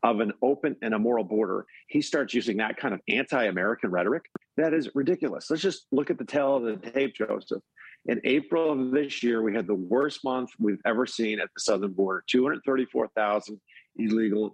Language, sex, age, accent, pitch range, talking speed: English, male, 50-69, American, 105-155 Hz, 190 wpm